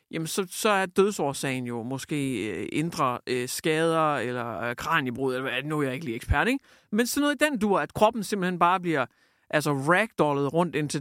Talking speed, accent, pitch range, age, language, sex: 195 wpm, native, 145-195 Hz, 60-79, Danish, male